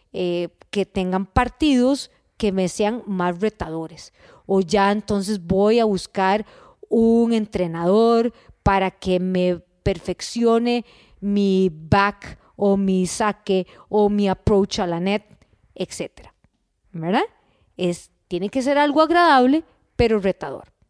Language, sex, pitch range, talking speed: Spanish, female, 185-260 Hz, 120 wpm